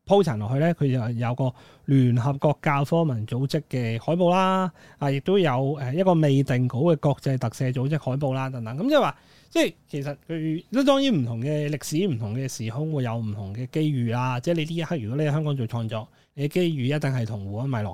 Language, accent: Chinese, native